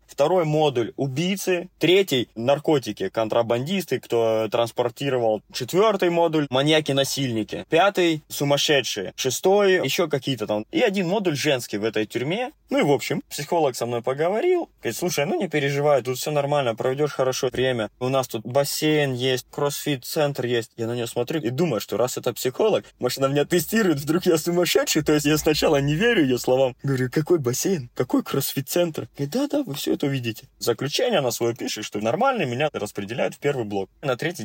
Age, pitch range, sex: 20-39, 115-155 Hz, male